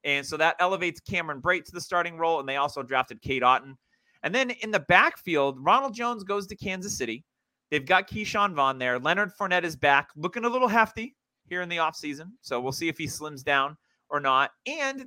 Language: English